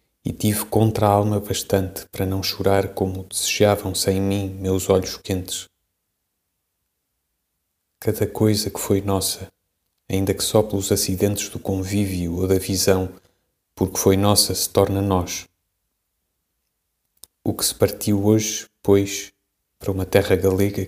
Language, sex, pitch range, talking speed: Portuguese, male, 95-105 Hz, 130 wpm